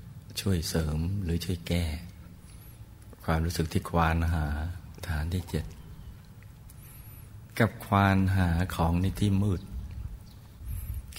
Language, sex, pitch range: Thai, male, 85-100 Hz